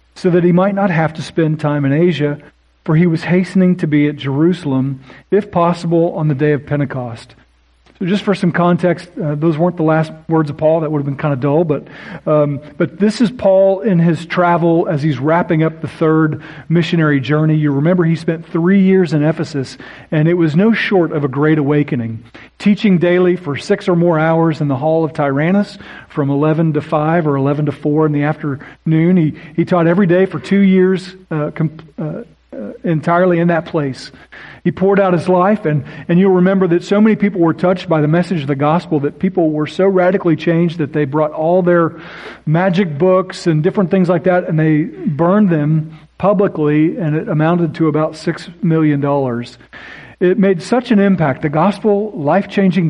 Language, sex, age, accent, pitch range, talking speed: English, male, 40-59, American, 150-180 Hz, 200 wpm